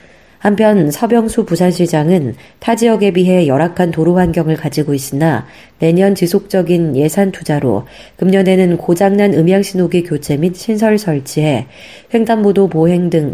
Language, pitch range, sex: Korean, 150-190 Hz, female